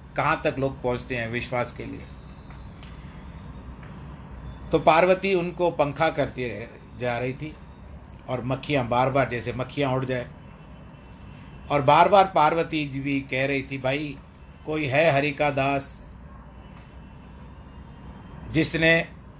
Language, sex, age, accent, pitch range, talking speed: Hindi, male, 50-69, native, 125-160 Hz, 125 wpm